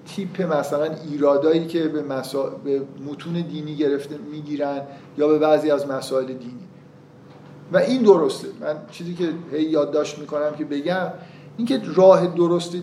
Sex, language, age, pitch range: male, Persian, 50-69, 150-185 Hz